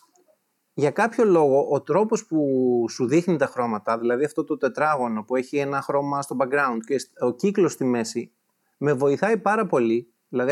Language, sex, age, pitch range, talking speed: Greek, male, 30-49, 130-180 Hz, 170 wpm